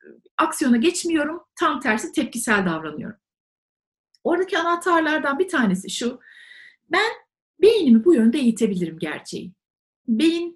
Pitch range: 220-340 Hz